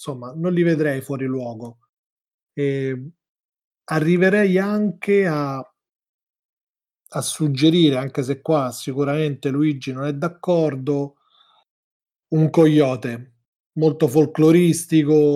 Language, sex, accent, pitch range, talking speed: Italian, male, native, 130-155 Hz, 90 wpm